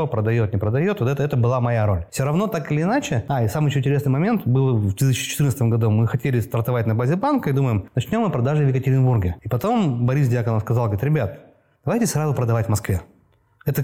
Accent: native